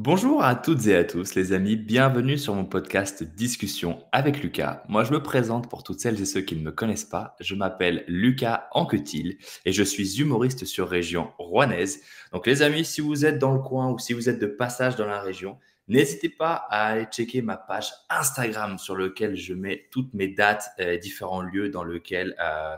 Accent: French